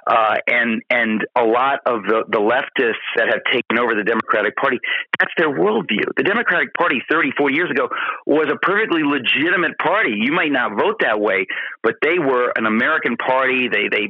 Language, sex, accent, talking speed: English, male, American, 185 wpm